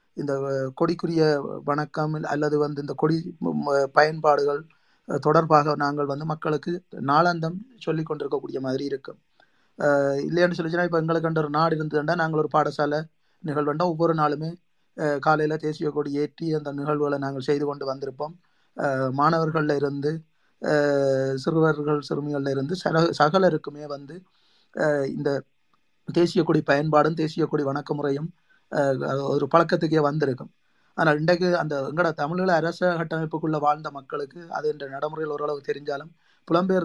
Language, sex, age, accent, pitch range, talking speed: Tamil, male, 20-39, native, 145-160 Hz, 120 wpm